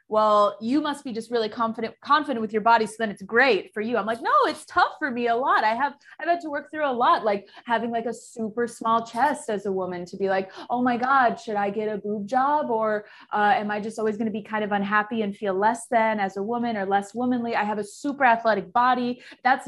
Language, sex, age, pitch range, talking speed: English, female, 20-39, 205-255 Hz, 260 wpm